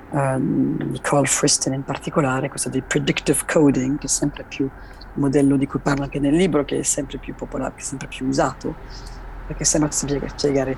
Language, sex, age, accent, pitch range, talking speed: Italian, female, 40-59, native, 135-155 Hz, 210 wpm